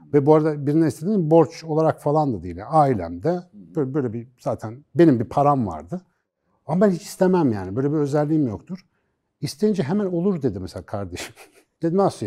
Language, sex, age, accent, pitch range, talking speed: Turkish, male, 60-79, native, 115-160 Hz, 180 wpm